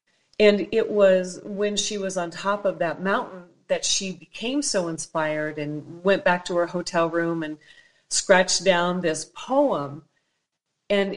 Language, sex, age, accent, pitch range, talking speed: English, female, 40-59, American, 165-200 Hz, 155 wpm